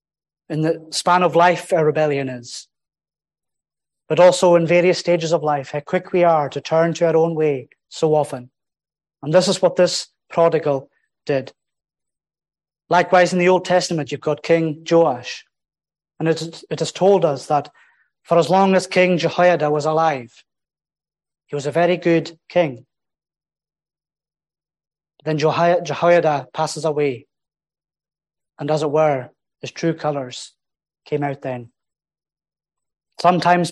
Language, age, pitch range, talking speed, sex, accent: English, 30-49, 150-175 Hz, 140 wpm, male, British